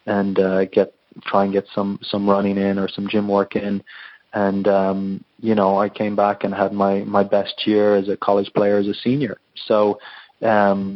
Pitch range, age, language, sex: 95-105 Hz, 20-39, English, male